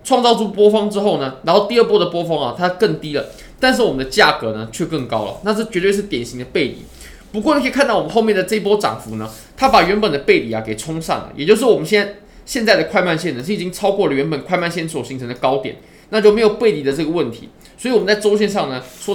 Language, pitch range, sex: Chinese, 150-220 Hz, male